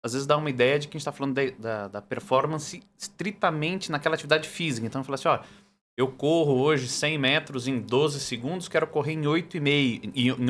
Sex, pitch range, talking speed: male, 120-175 Hz, 205 wpm